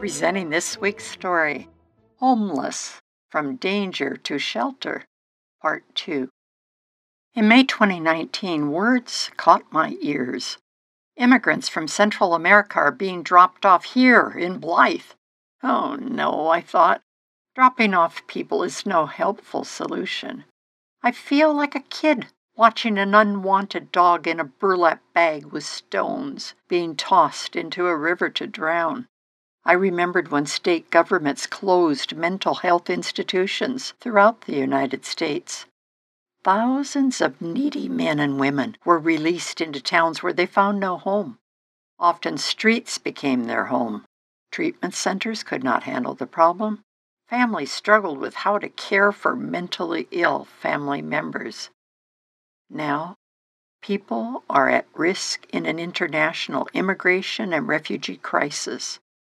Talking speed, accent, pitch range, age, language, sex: 125 wpm, American, 165-225 Hz, 60-79, English, female